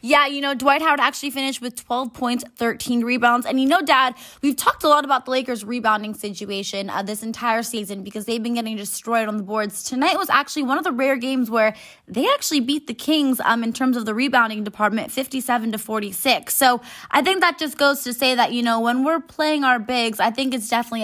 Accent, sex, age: American, female, 20-39